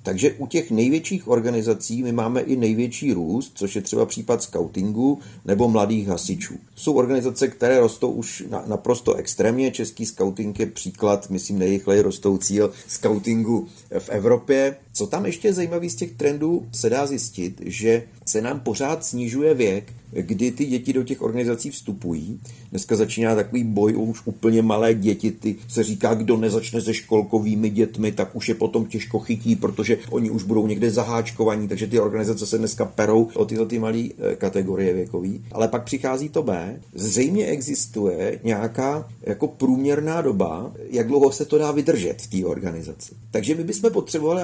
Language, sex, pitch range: Slovak, male, 110-130 Hz